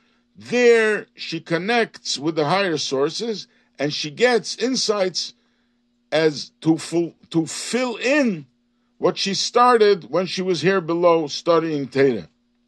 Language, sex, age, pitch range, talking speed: English, male, 50-69, 160-230 Hz, 130 wpm